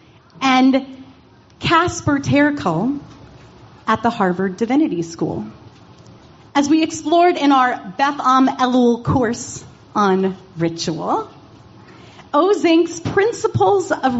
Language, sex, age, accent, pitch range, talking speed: English, female, 40-59, American, 205-310 Hz, 95 wpm